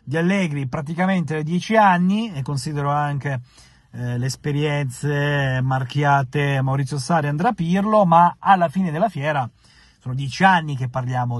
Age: 30-49